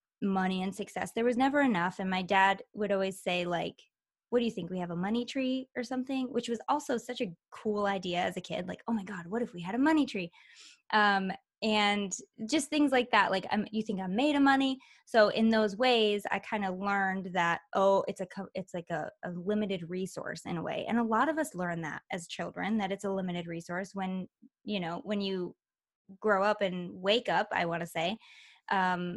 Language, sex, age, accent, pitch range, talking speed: English, female, 20-39, American, 185-235 Hz, 225 wpm